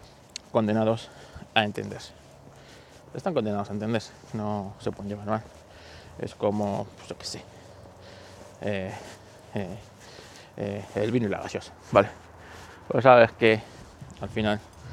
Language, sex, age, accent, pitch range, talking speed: Spanish, male, 20-39, Spanish, 95-110 Hz, 130 wpm